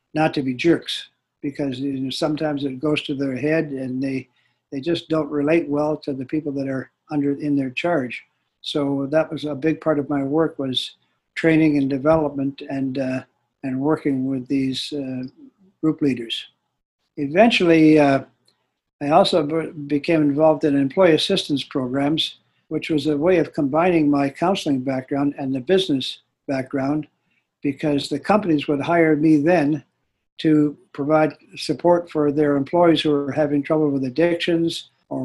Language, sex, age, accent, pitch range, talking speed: English, male, 60-79, American, 140-155 Hz, 160 wpm